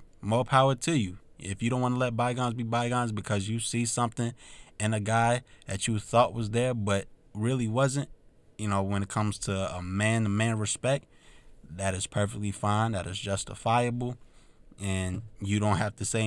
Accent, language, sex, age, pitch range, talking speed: American, English, male, 20-39, 100-120 Hz, 185 wpm